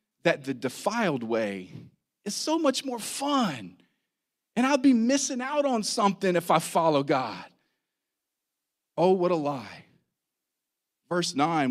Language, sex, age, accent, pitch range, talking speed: English, male, 40-59, American, 165-235 Hz, 135 wpm